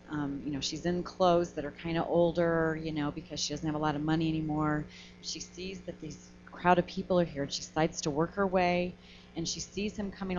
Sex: female